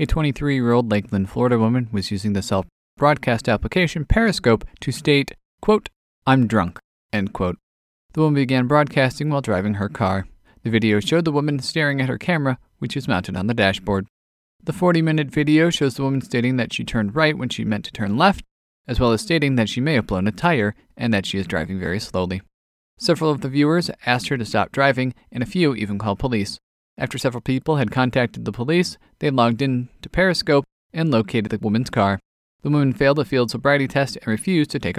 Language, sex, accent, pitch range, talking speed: English, male, American, 100-145 Hz, 205 wpm